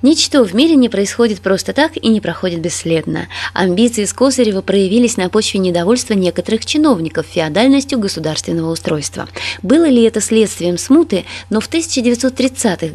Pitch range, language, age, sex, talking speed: 185-255 Hz, Russian, 20-39, female, 140 wpm